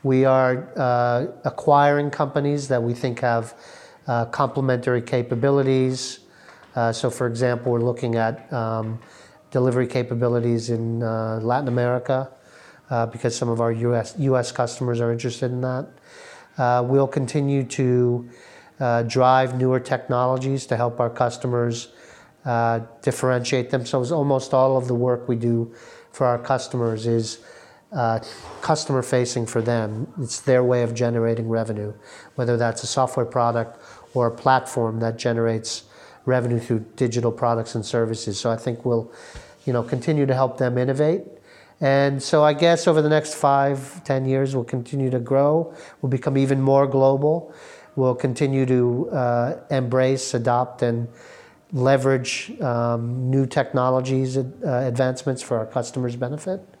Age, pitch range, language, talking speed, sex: 40-59, 120-135 Hz, Romanian, 145 wpm, male